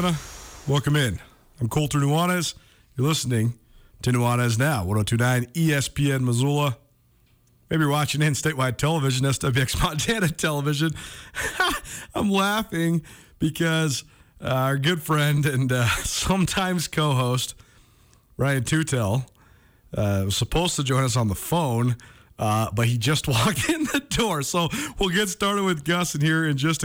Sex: male